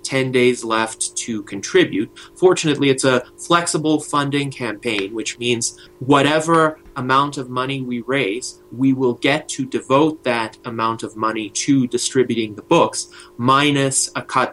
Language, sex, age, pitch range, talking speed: English, male, 30-49, 115-140 Hz, 145 wpm